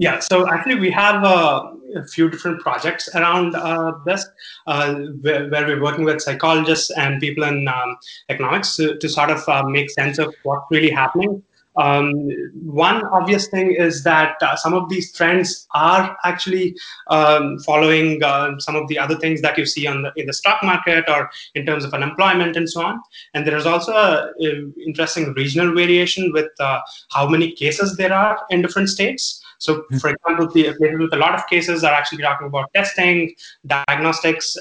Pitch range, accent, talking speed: 145-175 Hz, Indian, 180 wpm